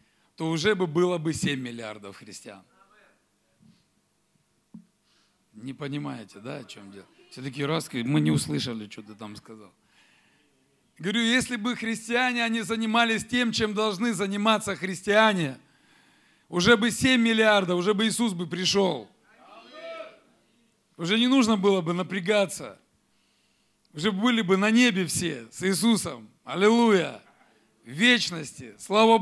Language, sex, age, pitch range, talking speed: Russian, male, 40-59, 160-220 Hz, 125 wpm